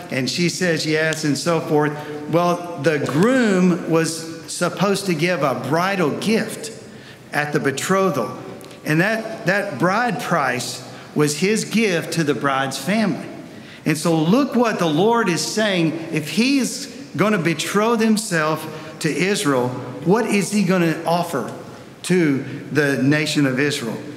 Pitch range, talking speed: 155-200 Hz, 140 wpm